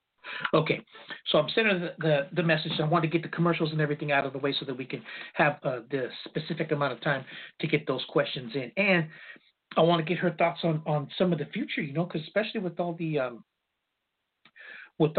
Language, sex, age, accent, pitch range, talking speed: English, male, 40-59, American, 145-180 Hz, 235 wpm